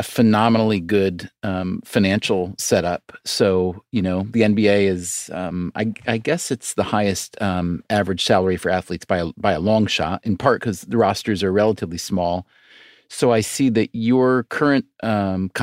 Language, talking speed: English, 170 wpm